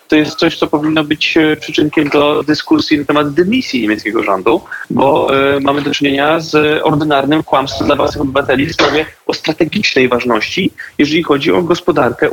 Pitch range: 130-155 Hz